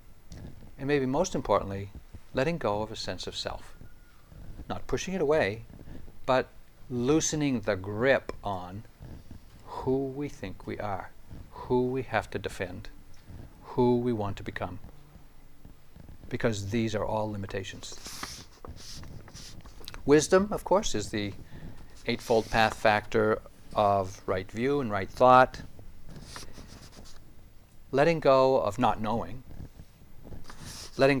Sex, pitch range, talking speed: male, 95-125 Hz, 115 wpm